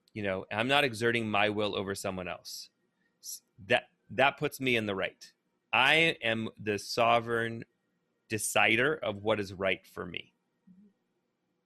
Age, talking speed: 30-49, 145 wpm